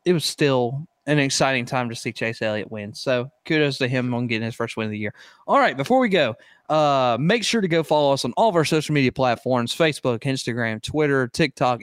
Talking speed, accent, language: 235 wpm, American, English